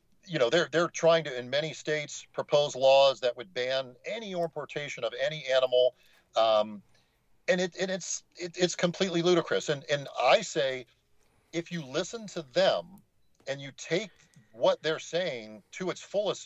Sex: male